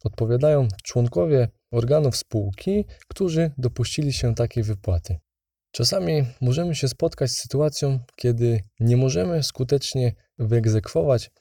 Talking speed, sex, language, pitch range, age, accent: 105 wpm, male, Polish, 115-145 Hz, 20-39, native